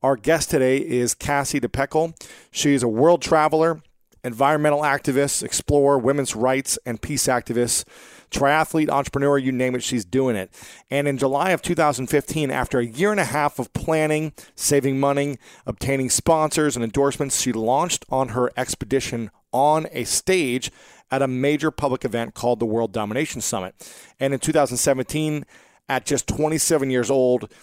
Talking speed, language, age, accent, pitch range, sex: 155 wpm, English, 40-59, American, 125-155 Hz, male